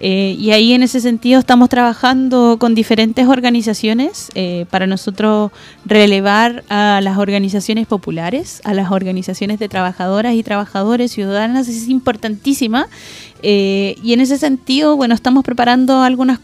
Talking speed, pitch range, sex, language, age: 140 wpm, 205-255 Hz, female, Spanish, 20-39